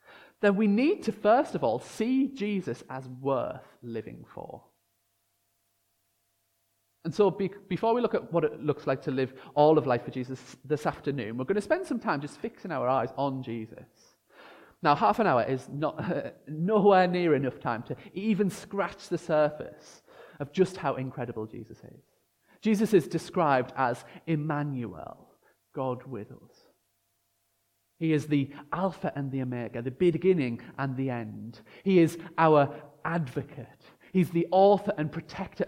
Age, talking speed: 30-49, 155 wpm